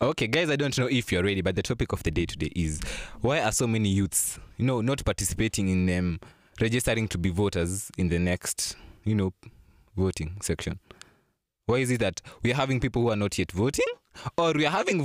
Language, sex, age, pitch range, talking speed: English, male, 20-39, 95-135 Hz, 210 wpm